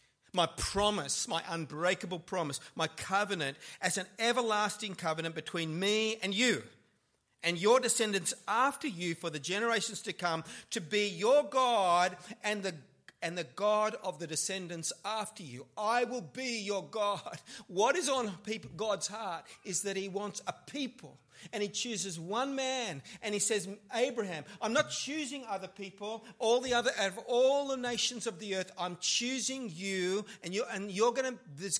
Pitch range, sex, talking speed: 145-220 Hz, male, 170 wpm